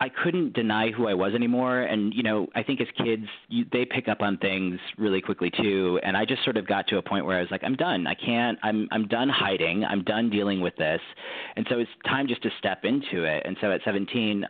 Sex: male